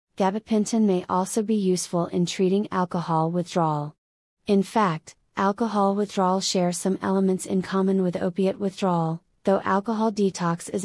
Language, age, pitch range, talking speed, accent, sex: English, 30-49, 175-200 Hz, 140 wpm, American, female